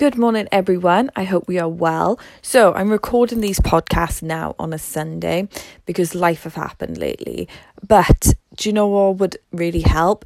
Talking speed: 175 wpm